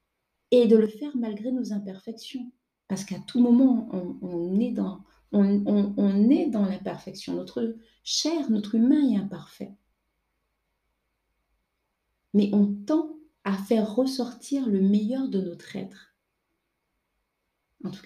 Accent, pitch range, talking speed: French, 185-220 Hz, 135 wpm